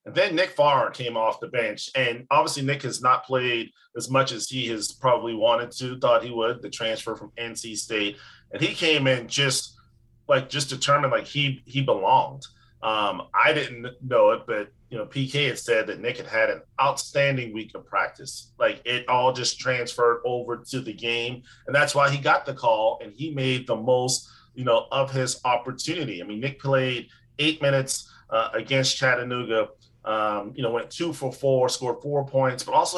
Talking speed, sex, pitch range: 200 wpm, male, 120-140 Hz